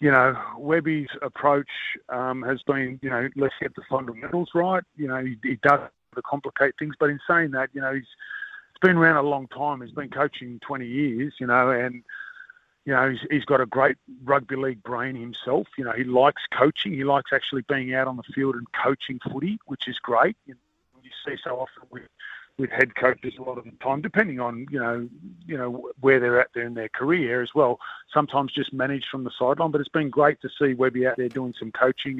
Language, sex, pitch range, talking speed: English, male, 130-145 Hz, 225 wpm